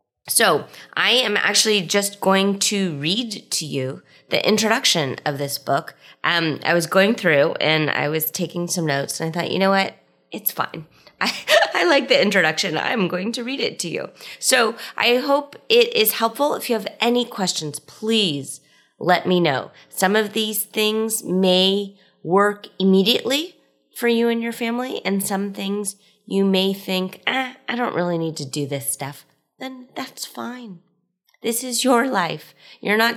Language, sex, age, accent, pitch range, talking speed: English, female, 30-49, American, 165-225 Hz, 175 wpm